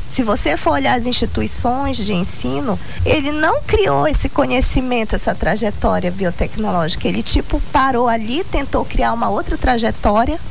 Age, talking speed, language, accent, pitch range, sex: 20-39, 145 wpm, Portuguese, Brazilian, 240-320 Hz, female